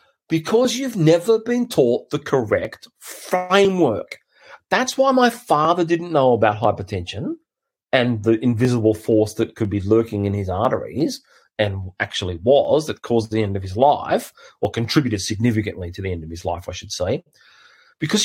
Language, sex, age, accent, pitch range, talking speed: English, male, 30-49, Australian, 115-175 Hz, 165 wpm